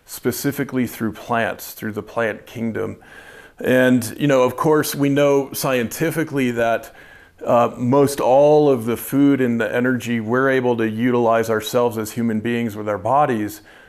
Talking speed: 155 wpm